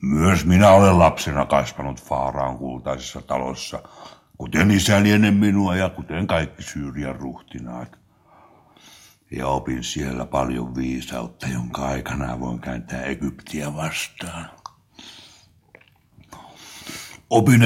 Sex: male